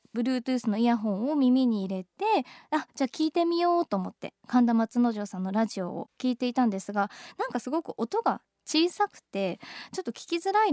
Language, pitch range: Japanese, 235-335 Hz